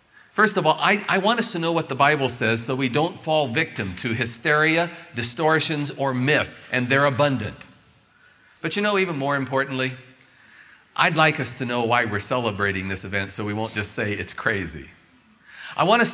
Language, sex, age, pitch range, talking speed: English, male, 40-59, 110-150 Hz, 195 wpm